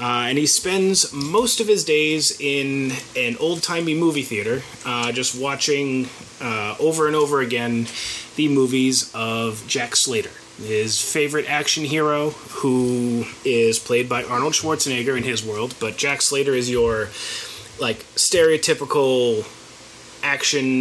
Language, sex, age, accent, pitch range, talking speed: English, male, 30-49, American, 125-160 Hz, 135 wpm